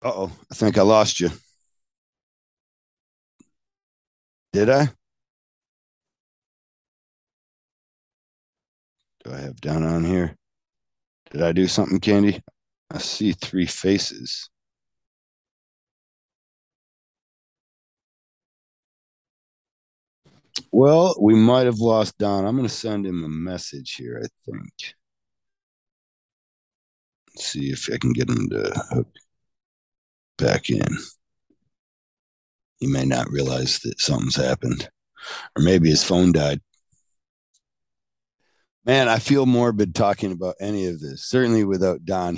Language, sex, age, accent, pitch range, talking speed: English, male, 60-79, American, 80-110 Hz, 105 wpm